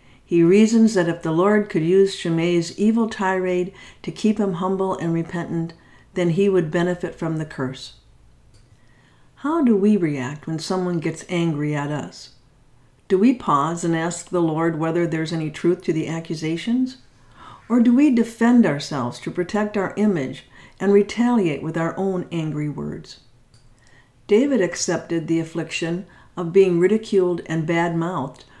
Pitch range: 160-205 Hz